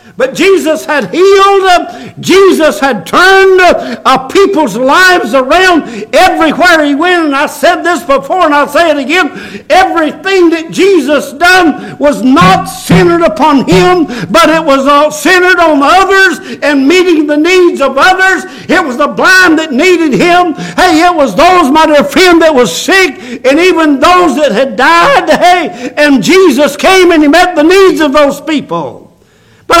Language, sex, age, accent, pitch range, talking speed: English, male, 60-79, American, 280-345 Hz, 165 wpm